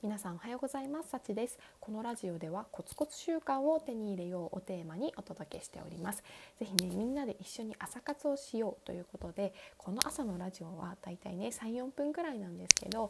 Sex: female